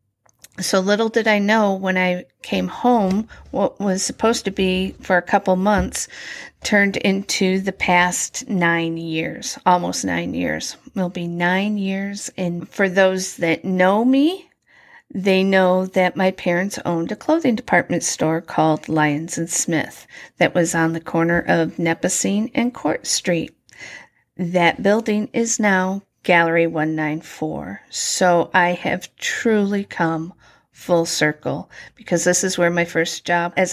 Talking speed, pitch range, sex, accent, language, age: 150 wpm, 170-210 Hz, female, American, English, 50-69